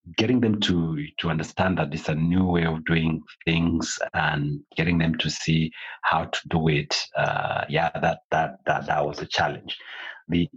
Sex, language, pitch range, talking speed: male, English, 75-85 Hz, 185 wpm